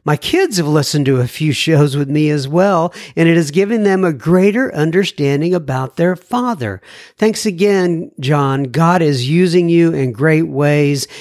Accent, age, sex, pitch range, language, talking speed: American, 50-69, male, 130-180 Hz, English, 175 wpm